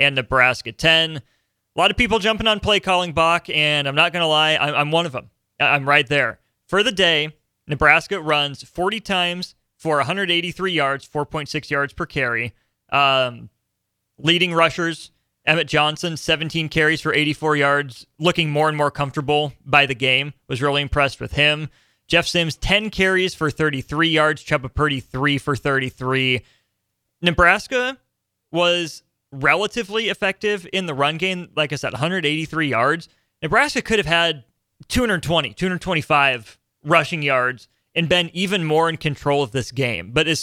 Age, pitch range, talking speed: 30-49, 140-170 Hz, 155 wpm